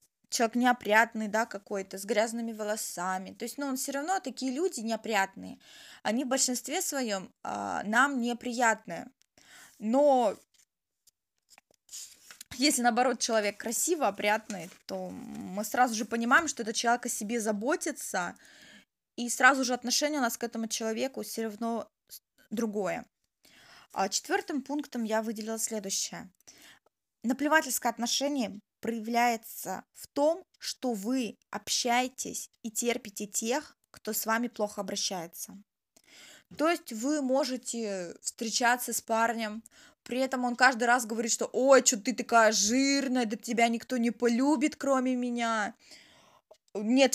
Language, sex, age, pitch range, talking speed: Russian, female, 20-39, 225-260 Hz, 130 wpm